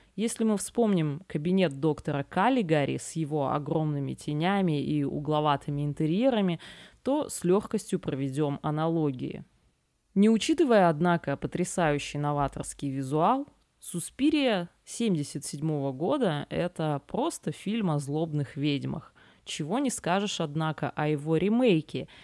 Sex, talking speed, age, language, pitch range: female, 110 wpm, 20-39, Russian, 145-200 Hz